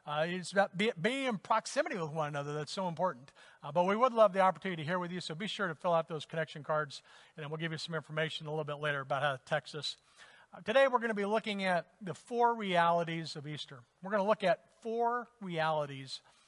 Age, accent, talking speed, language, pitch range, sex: 50-69, American, 250 wpm, English, 160-190 Hz, male